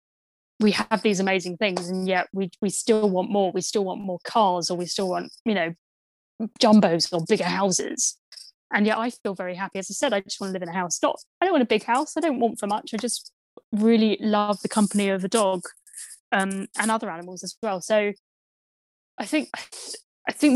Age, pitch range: 20-39, 185-220 Hz